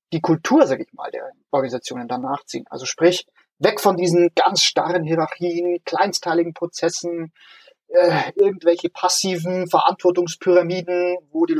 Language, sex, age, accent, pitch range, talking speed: German, male, 30-49, German, 150-200 Hz, 130 wpm